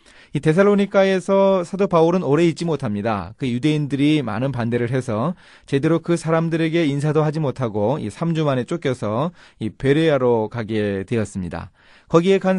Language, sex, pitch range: Korean, male, 115-170 Hz